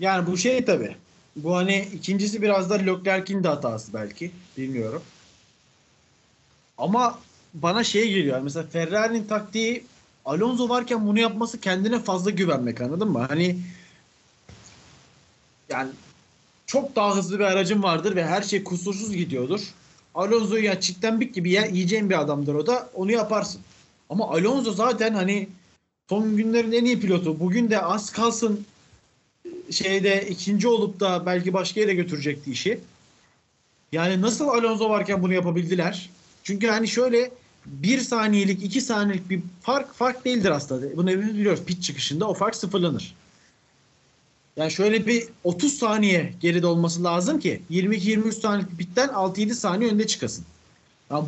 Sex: male